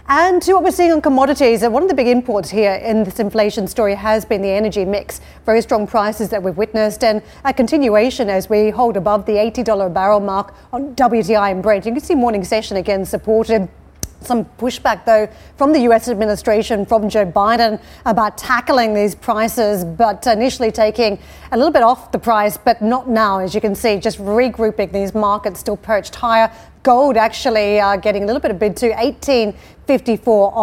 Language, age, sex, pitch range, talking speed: English, 40-59, female, 205-240 Hz, 195 wpm